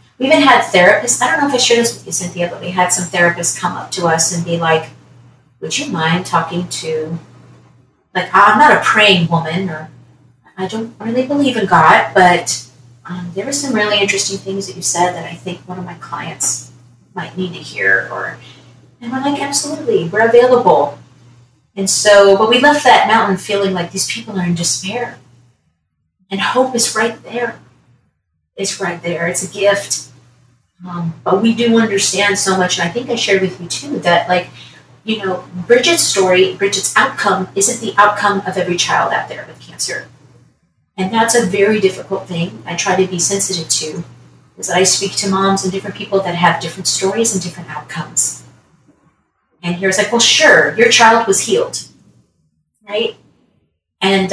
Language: English